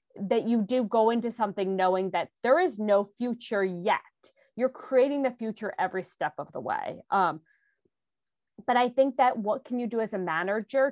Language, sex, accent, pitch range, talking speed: English, female, American, 190-255 Hz, 185 wpm